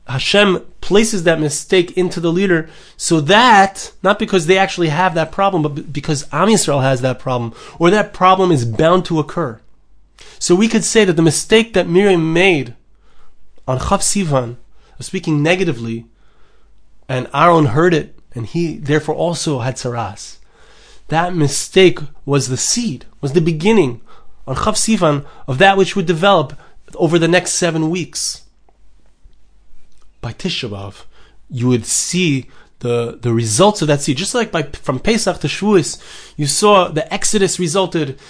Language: English